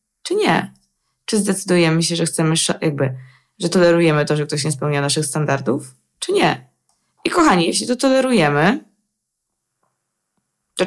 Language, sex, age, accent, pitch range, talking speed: Polish, female, 20-39, native, 145-200 Hz, 140 wpm